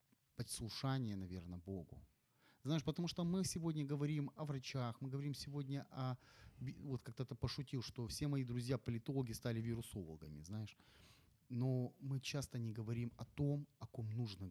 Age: 30-49